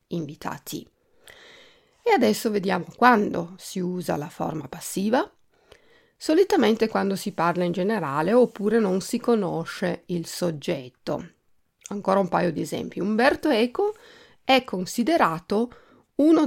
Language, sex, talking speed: Italian, female, 115 wpm